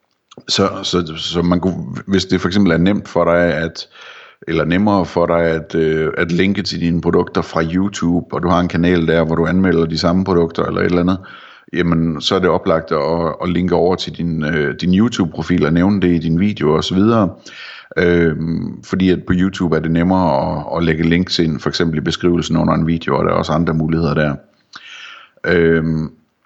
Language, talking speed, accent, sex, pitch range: Danish, 210 wpm, native, male, 80-95 Hz